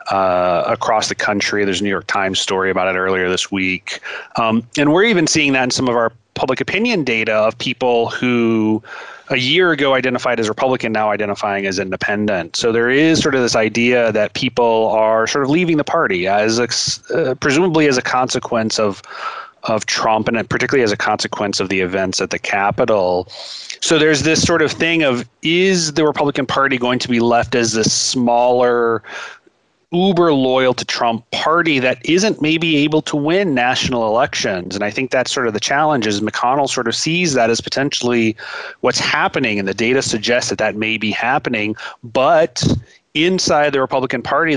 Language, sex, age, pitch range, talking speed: English, male, 30-49, 110-140 Hz, 190 wpm